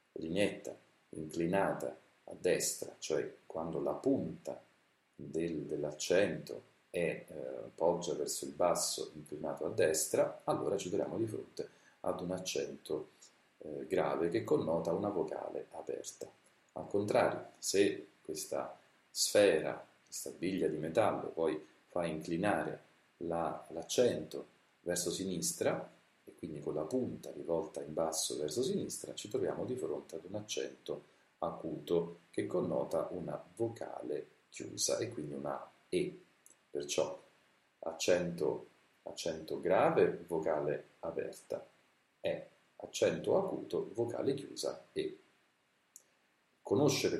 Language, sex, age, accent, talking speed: Italian, male, 40-59, native, 110 wpm